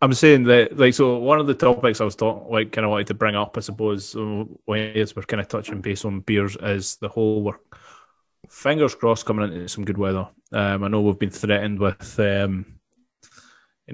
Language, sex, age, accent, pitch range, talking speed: English, male, 20-39, British, 105-120 Hz, 205 wpm